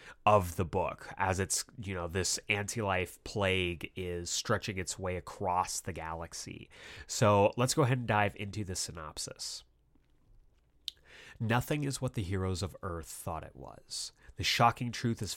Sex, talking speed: male, 155 wpm